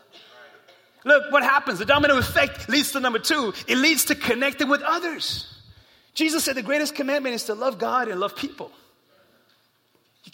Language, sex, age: English, male, 30-49